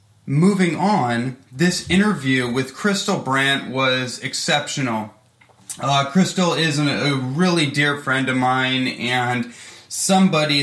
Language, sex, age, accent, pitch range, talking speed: English, male, 20-39, American, 125-155 Hz, 115 wpm